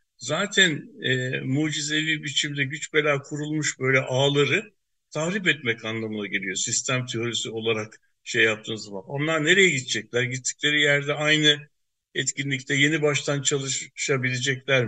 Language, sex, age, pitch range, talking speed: Turkish, male, 60-79, 130-155 Hz, 115 wpm